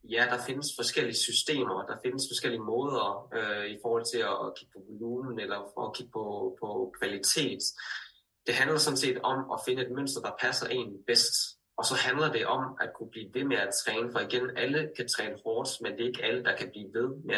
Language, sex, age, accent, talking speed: Danish, male, 20-39, native, 225 wpm